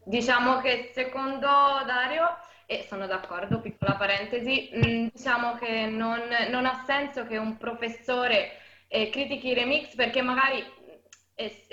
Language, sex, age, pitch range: Italian, female, 20-39, 210-260 Hz